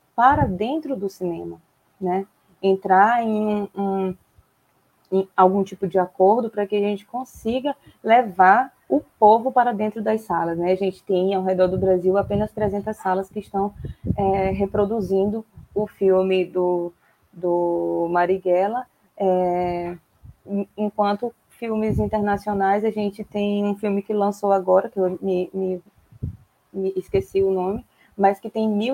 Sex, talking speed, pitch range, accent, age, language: female, 145 wpm, 185-215 Hz, Brazilian, 20-39, Portuguese